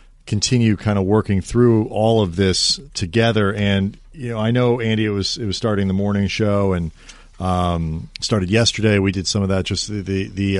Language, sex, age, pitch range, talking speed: English, male, 40-59, 90-110 Hz, 205 wpm